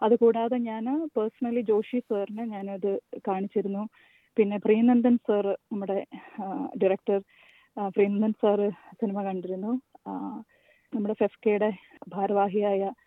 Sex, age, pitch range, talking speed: female, 30-49, 205-235 Hz, 85 wpm